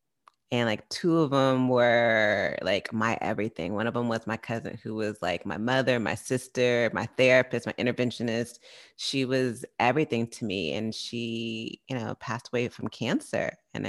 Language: English